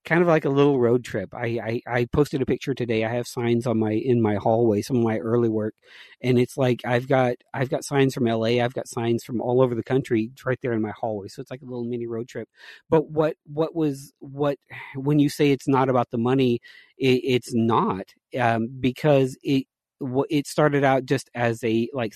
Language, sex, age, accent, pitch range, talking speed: English, male, 40-59, American, 115-135 Hz, 230 wpm